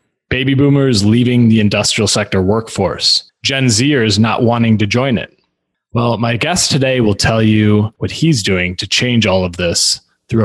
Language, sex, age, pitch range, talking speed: English, male, 20-39, 100-120 Hz, 170 wpm